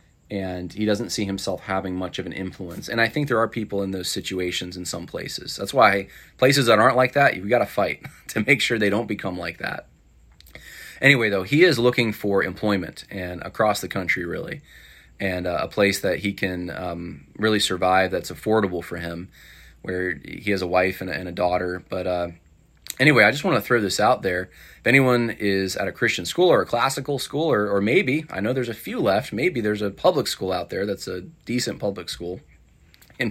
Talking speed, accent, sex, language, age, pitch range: 220 wpm, American, male, English, 30-49, 90-110 Hz